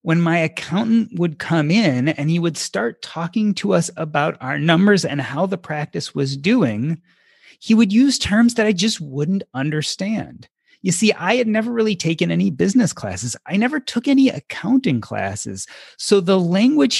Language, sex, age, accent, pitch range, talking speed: English, male, 30-49, American, 160-225 Hz, 175 wpm